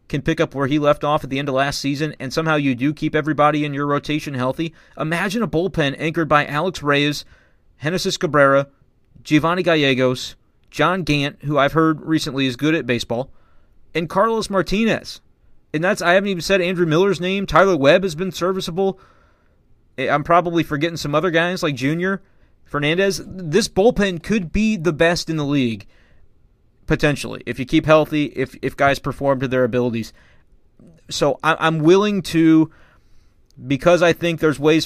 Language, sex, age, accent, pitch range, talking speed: English, male, 30-49, American, 135-170 Hz, 175 wpm